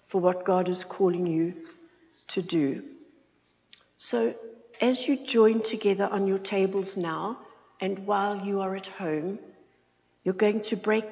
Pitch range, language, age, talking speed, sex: 185-235 Hz, English, 60-79, 145 wpm, female